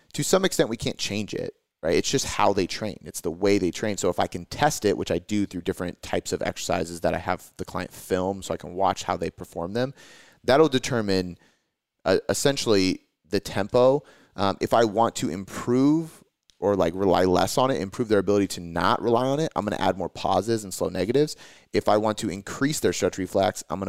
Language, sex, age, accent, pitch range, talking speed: English, male, 30-49, American, 95-125 Hz, 230 wpm